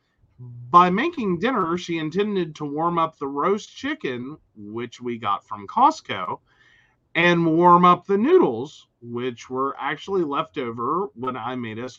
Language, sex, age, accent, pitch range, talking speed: English, male, 40-59, American, 115-180 Hz, 150 wpm